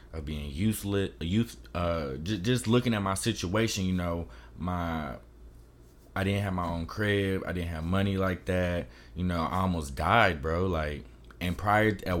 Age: 20-39